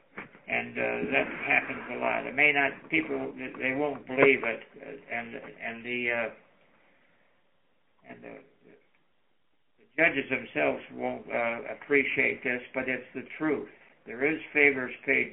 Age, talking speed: 60-79, 135 wpm